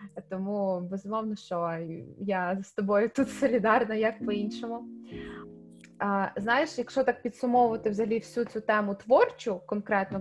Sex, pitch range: female, 200-245 Hz